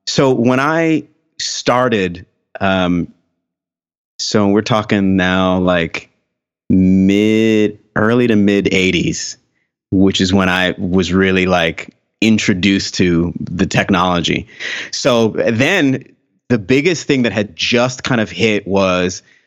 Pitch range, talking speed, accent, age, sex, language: 95-115 Hz, 115 wpm, American, 30-49, male, English